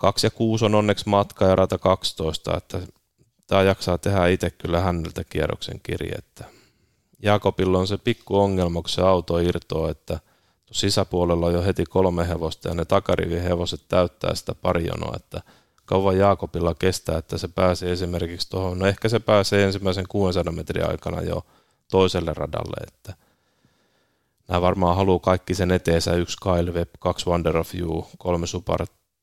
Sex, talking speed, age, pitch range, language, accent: male, 155 wpm, 30-49, 85-95 Hz, Finnish, native